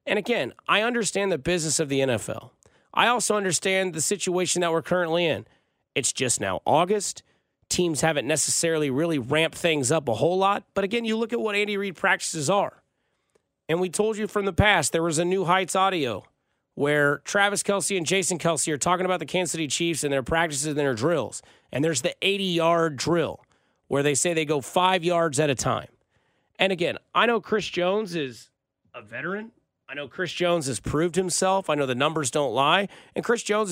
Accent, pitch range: American, 160-195 Hz